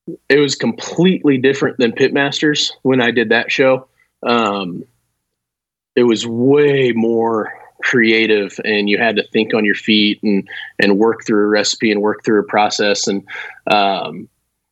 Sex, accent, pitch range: male, American, 105-140 Hz